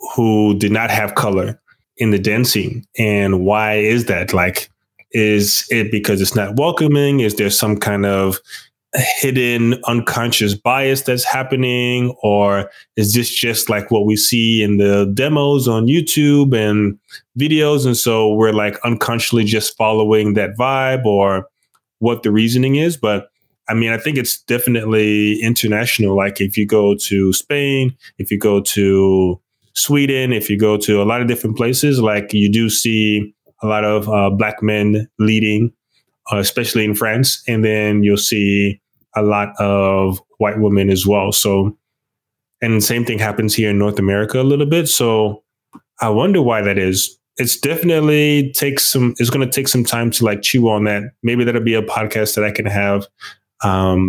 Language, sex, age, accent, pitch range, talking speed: English, male, 20-39, American, 105-120 Hz, 170 wpm